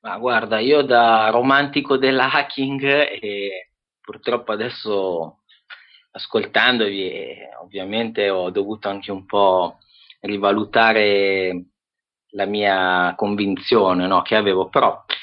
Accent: native